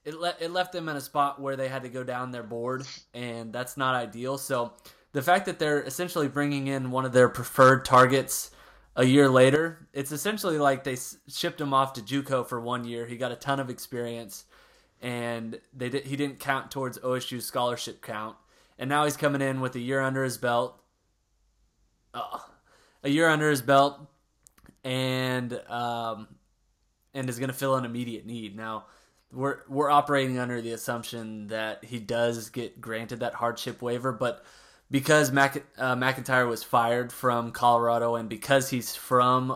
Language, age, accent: English, 20-39, American